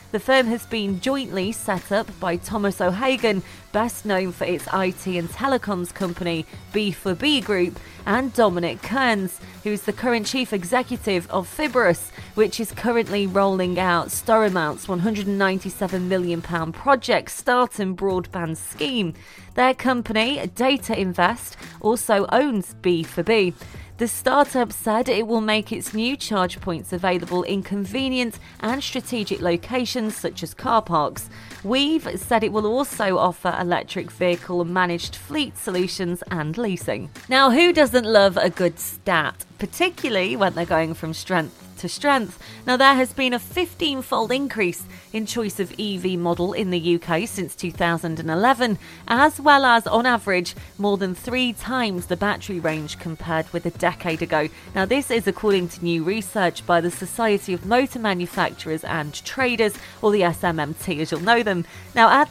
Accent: British